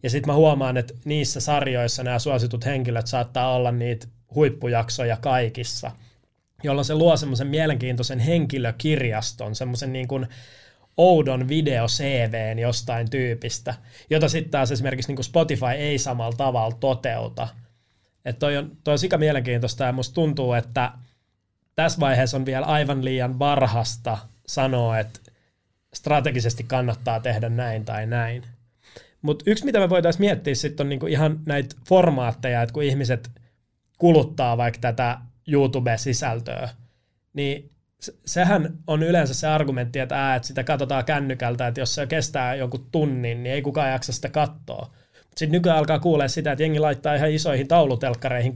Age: 20-39